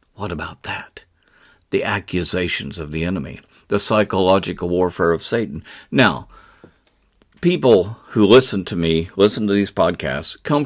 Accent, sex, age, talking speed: American, male, 50-69, 135 wpm